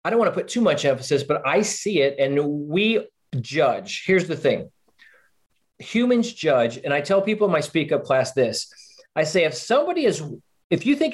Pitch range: 145-200 Hz